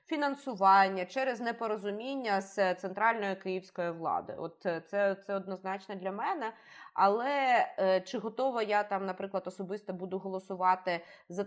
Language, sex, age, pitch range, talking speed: Ukrainian, female, 20-39, 190-230 Hz, 125 wpm